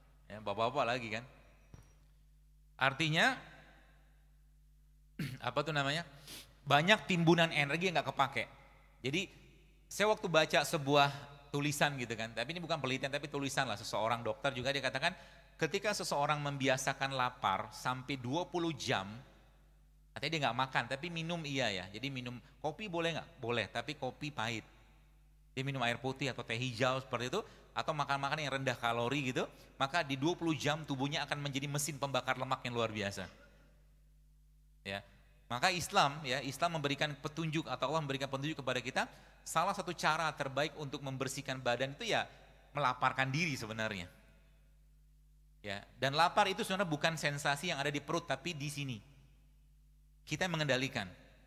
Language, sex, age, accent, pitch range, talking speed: Indonesian, male, 30-49, native, 130-155 Hz, 145 wpm